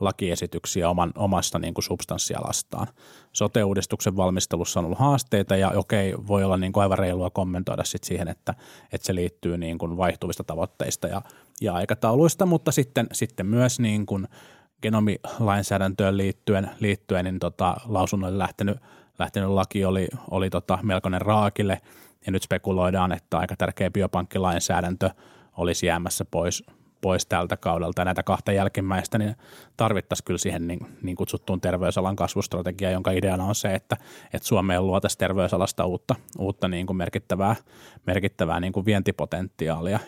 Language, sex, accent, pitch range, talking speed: Finnish, male, native, 90-110 Hz, 120 wpm